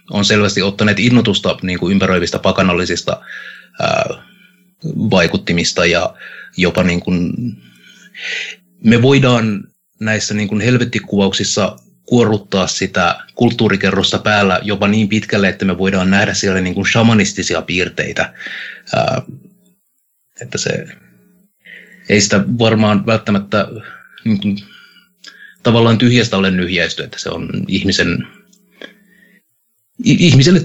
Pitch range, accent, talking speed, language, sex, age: 100-135 Hz, native, 105 wpm, Finnish, male, 30-49